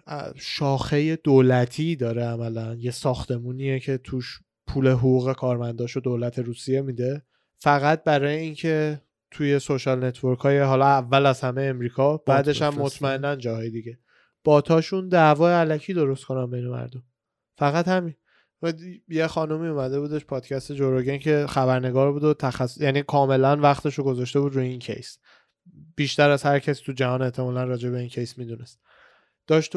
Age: 20-39